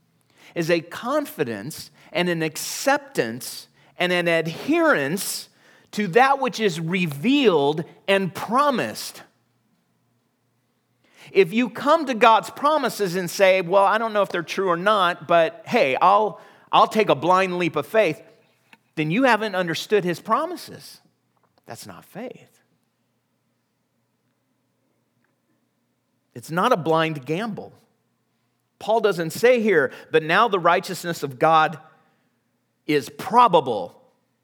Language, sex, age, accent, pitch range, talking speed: English, male, 40-59, American, 155-220 Hz, 120 wpm